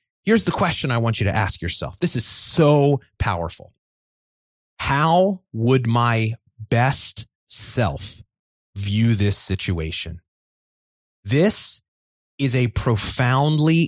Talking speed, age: 110 wpm, 30-49